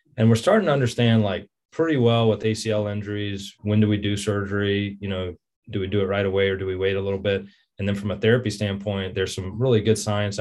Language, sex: English, male